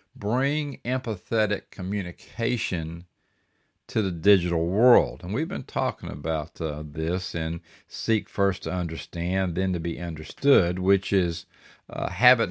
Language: English